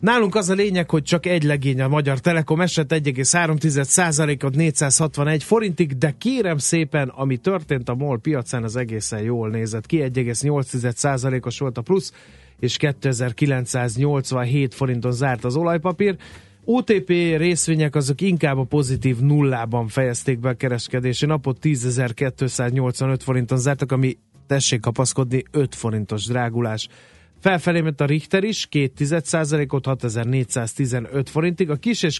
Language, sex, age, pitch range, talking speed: Hungarian, male, 30-49, 125-155 Hz, 130 wpm